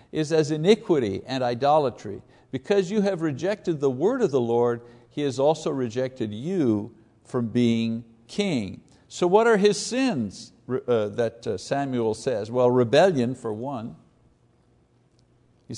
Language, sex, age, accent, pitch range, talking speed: English, male, 60-79, American, 125-170 Hz, 140 wpm